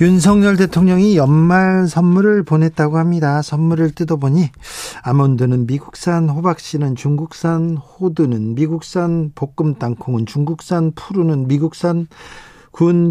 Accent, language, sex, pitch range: native, Korean, male, 140-175 Hz